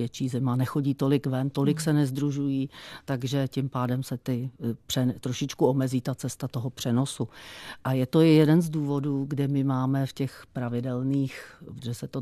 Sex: female